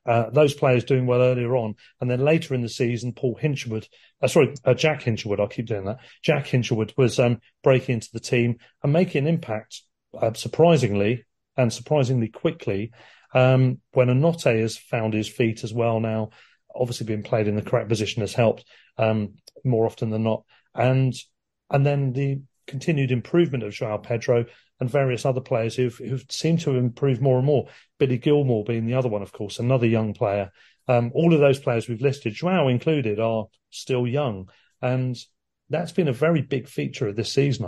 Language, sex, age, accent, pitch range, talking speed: English, male, 40-59, British, 115-135 Hz, 185 wpm